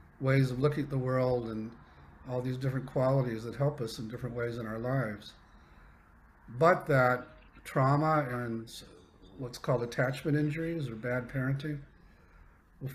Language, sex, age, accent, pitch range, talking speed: English, male, 50-69, American, 110-135 Hz, 150 wpm